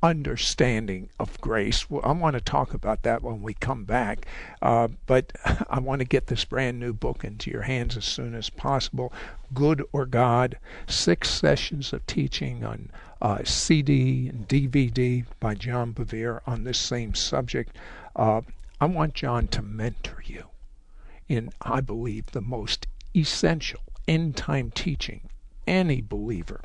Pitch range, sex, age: 110-140 Hz, male, 60-79